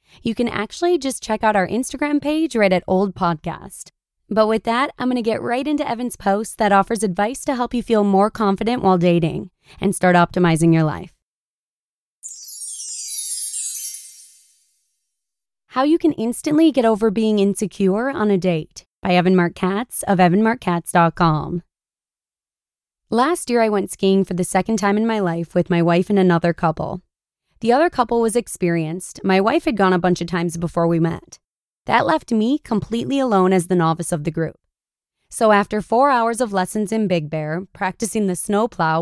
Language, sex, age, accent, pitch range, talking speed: English, female, 20-39, American, 175-230 Hz, 175 wpm